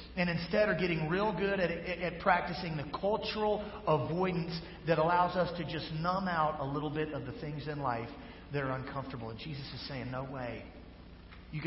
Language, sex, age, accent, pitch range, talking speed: English, male, 40-59, American, 115-170 Hz, 195 wpm